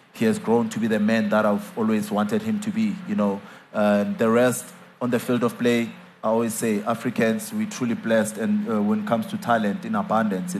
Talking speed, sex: 230 wpm, male